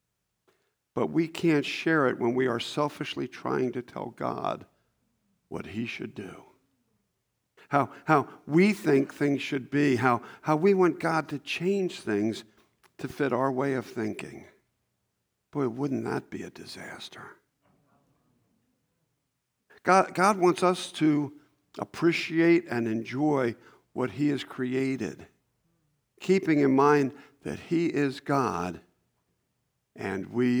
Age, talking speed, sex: 50-69, 125 wpm, male